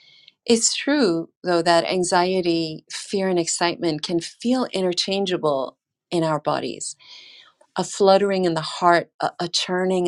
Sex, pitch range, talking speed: female, 160-200 Hz, 130 wpm